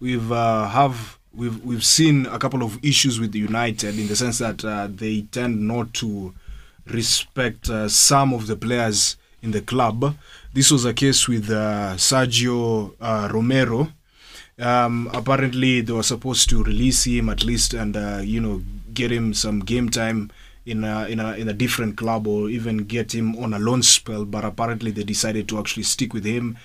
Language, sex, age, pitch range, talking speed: English, male, 20-39, 110-130 Hz, 190 wpm